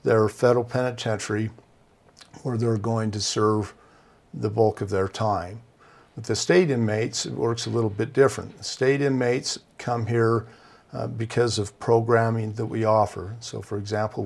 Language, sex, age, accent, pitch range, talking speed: English, male, 50-69, American, 105-120 Hz, 155 wpm